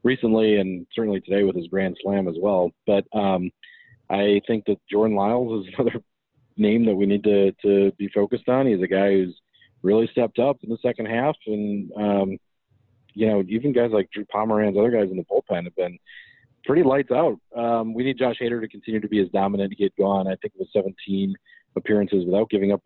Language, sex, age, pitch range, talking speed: English, male, 40-59, 90-105 Hz, 215 wpm